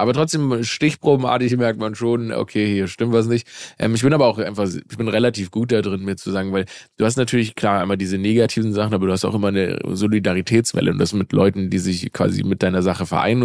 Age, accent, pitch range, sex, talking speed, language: 20-39, German, 95-115 Hz, male, 235 wpm, German